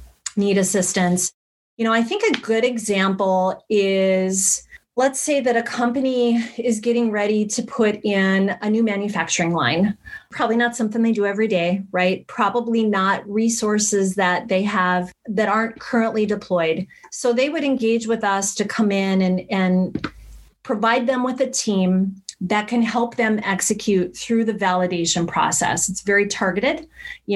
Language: English